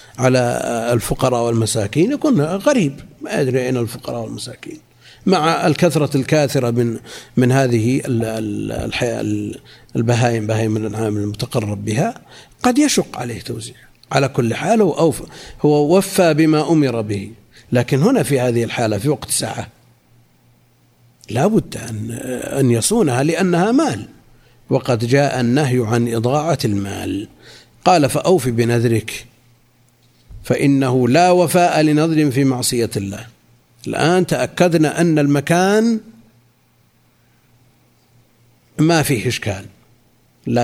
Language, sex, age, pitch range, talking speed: Arabic, male, 50-69, 115-150 Hz, 110 wpm